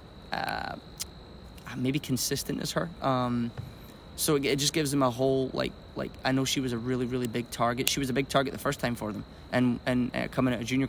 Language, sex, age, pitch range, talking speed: English, male, 20-39, 120-135 Hz, 230 wpm